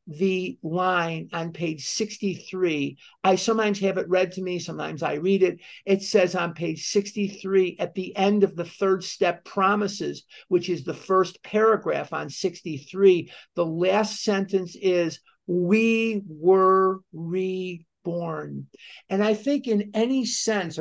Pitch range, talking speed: 175-210 Hz, 140 wpm